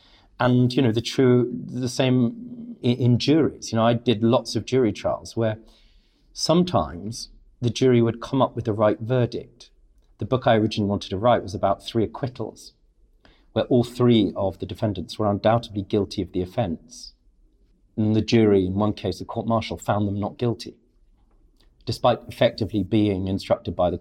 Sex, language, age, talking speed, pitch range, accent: male, English, 40-59, 175 wpm, 95-115 Hz, British